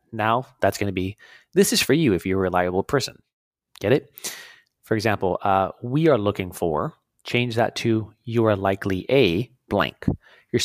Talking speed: 180 wpm